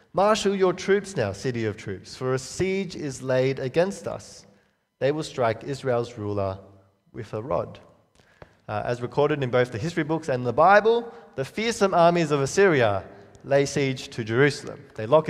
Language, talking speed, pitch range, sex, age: English, 175 wpm, 105-150 Hz, male, 20-39